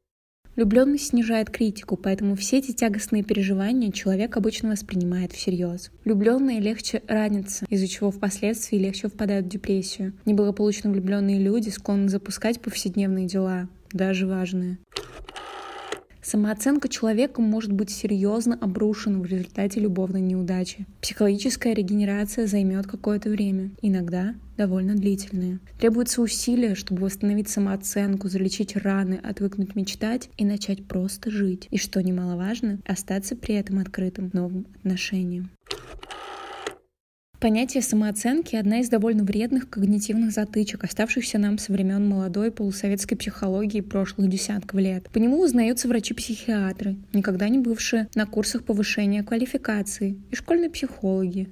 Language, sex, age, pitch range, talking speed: Russian, female, 20-39, 195-225 Hz, 120 wpm